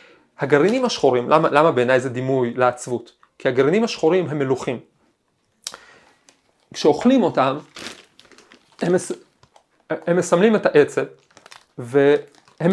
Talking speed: 100 wpm